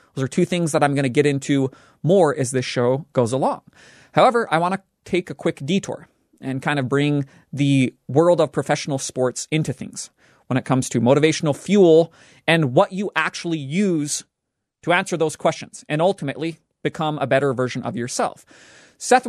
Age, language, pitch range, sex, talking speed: 30-49, English, 135-175 Hz, male, 185 wpm